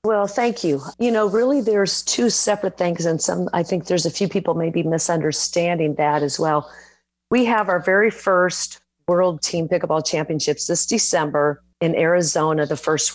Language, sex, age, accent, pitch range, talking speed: English, female, 40-59, American, 155-195 Hz, 175 wpm